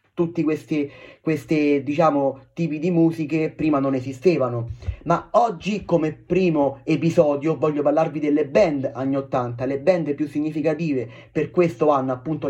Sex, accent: male, native